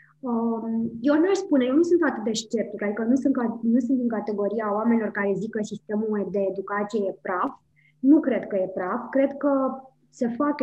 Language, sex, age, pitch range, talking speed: Romanian, male, 20-39, 210-255 Hz, 190 wpm